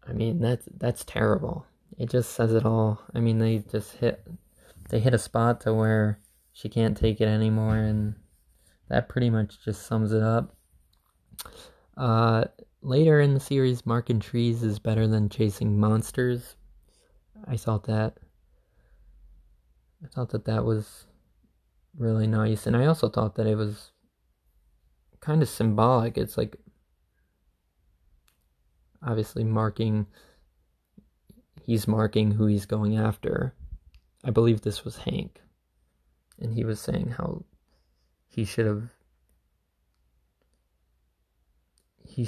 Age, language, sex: 20-39, English, male